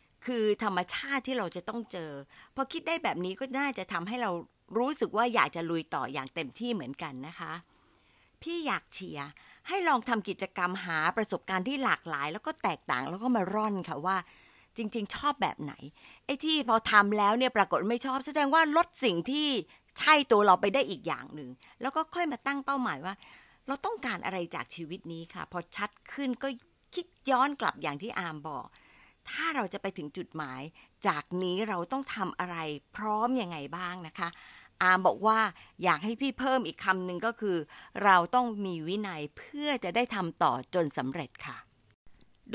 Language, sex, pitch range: Thai, female, 180-260 Hz